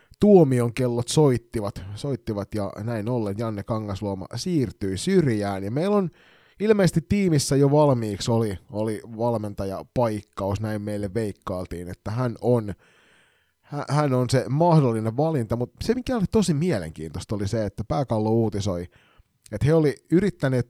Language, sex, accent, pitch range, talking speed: Finnish, male, native, 100-145 Hz, 135 wpm